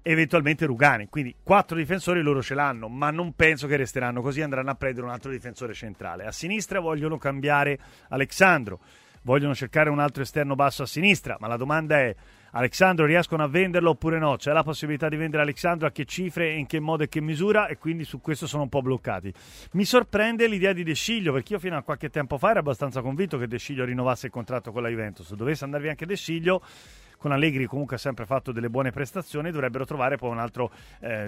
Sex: male